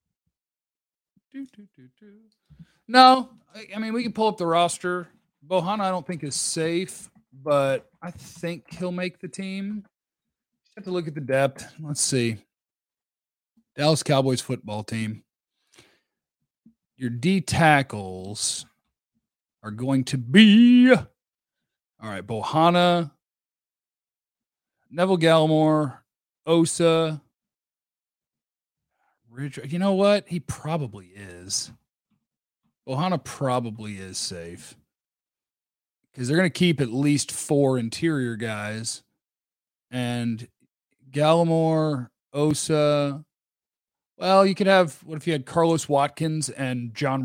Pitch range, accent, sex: 130-185 Hz, American, male